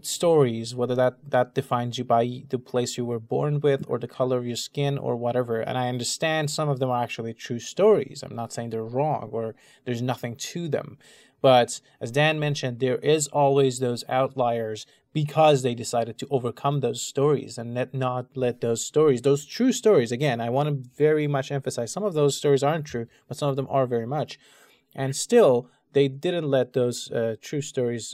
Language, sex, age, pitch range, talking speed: English, male, 20-39, 120-145 Hz, 200 wpm